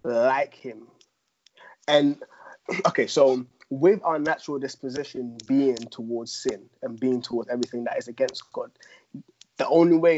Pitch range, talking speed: 120-140 Hz, 135 wpm